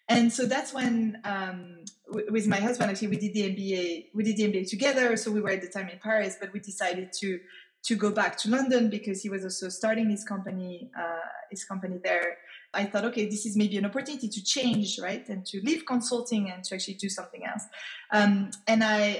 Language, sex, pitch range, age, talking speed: English, female, 190-225 Hz, 20-39, 220 wpm